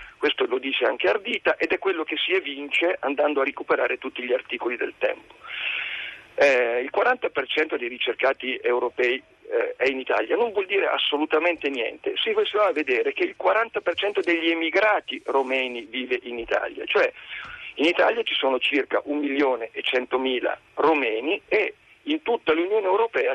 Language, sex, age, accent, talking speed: Italian, male, 50-69, native, 155 wpm